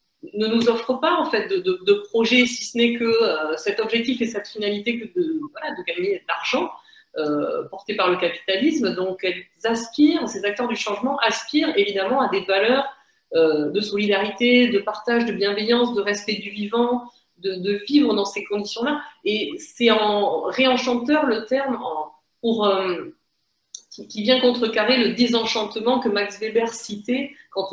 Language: French